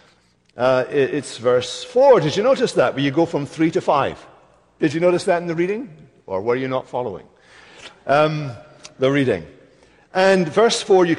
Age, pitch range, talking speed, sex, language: 60-79, 130-185 Hz, 180 wpm, male, English